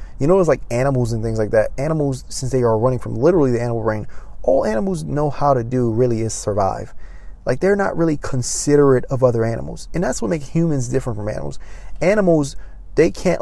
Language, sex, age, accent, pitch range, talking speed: English, male, 20-39, American, 115-145 Hz, 210 wpm